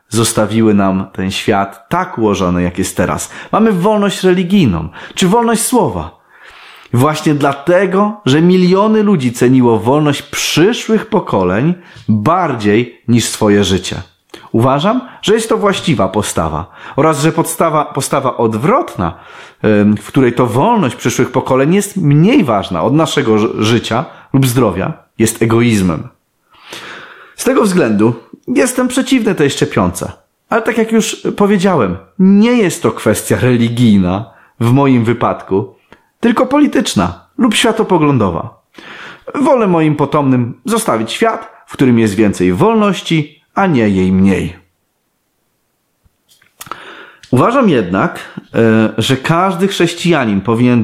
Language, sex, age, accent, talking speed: Polish, male, 30-49, native, 115 wpm